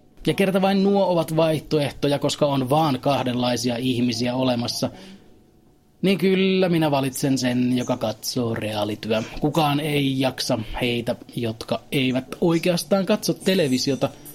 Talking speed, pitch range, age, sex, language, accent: 120 wpm, 120-155 Hz, 30-49, male, Finnish, native